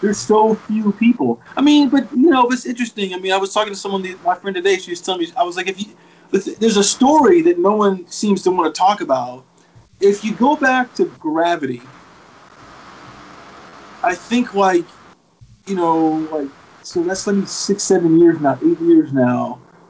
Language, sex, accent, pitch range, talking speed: English, male, American, 140-200 Hz, 195 wpm